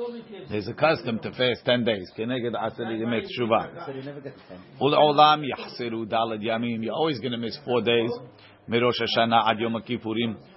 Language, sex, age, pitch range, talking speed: English, male, 50-69, 115-150 Hz, 100 wpm